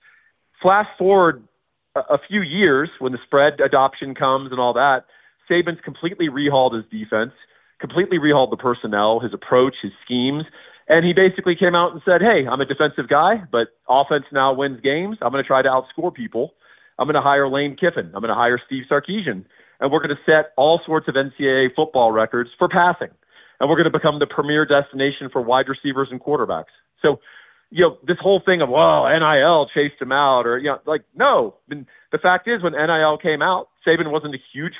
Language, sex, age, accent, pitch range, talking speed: English, male, 40-59, American, 135-170 Hz, 200 wpm